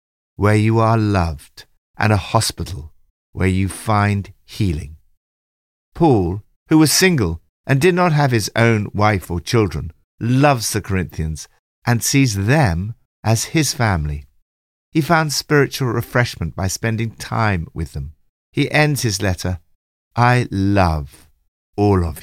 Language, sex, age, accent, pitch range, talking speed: English, male, 50-69, British, 85-130 Hz, 135 wpm